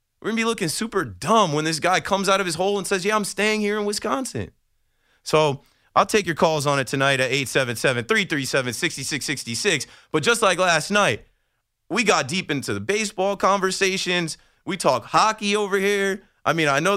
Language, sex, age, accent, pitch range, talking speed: English, male, 20-39, American, 140-200 Hz, 190 wpm